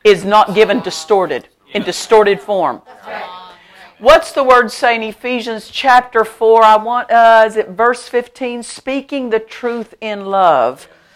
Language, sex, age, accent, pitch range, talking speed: English, female, 50-69, American, 175-230 Hz, 145 wpm